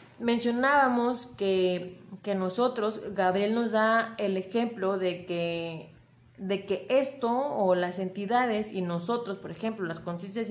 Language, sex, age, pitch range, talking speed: Spanish, female, 30-49, 180-255 Hz, 130 wpm